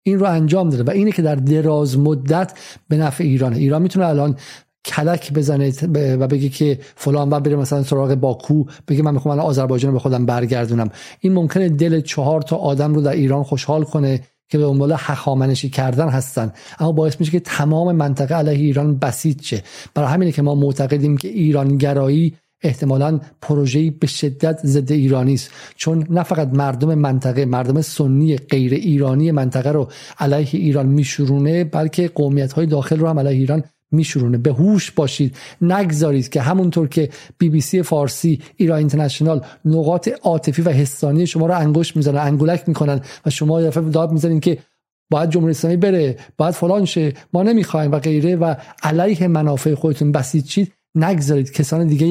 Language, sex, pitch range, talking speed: Persian, male, 140-160 Hz, 165 wpm